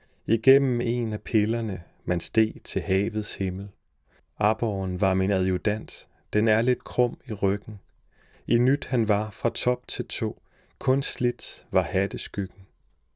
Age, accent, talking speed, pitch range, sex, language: 30-49, native, 140 wpm, 95-115 Hz, male, Danish